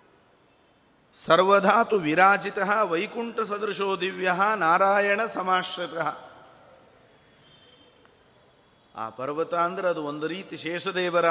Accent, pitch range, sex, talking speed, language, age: native, 155-190 Hz, male, 75 wpm, Kannada, 50-69